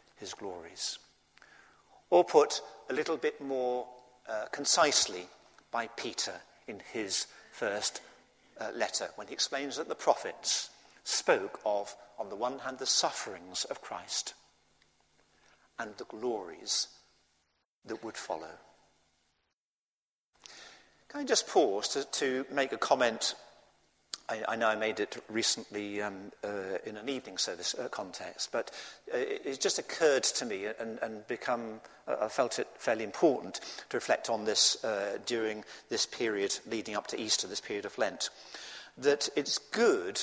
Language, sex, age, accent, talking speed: English, male, 50-69, British, 145 wpm